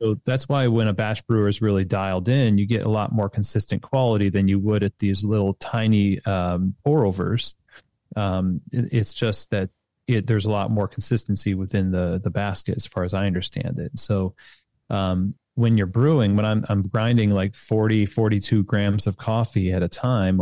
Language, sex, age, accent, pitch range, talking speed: English, male, 30-49, American, 100-115 Hz, 195 wpm